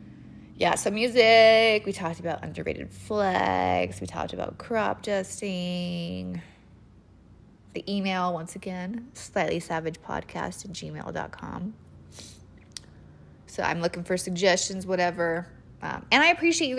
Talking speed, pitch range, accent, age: 110 wpm, 145-190 Hz, American, 20-39